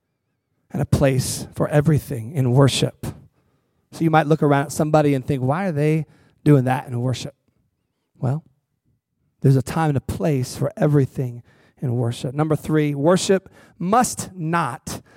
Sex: male